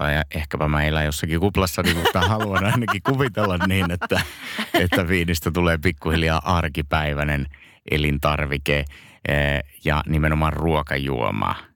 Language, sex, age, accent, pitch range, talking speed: Finnish, male, 30-49, native, 80-85 Hz, 105 wpm